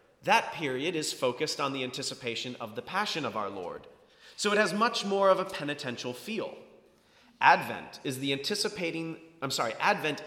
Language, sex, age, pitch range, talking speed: English, male, 30-49, 140-195 Hz, 170 wpm